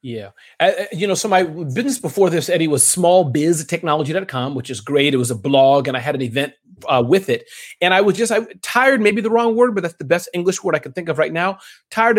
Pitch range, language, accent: 150-220 Hz, English, American